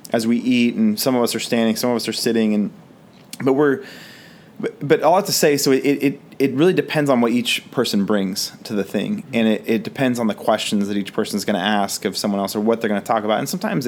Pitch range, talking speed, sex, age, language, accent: 105-135 Hz, 275 wpm, male, 30-49, English, American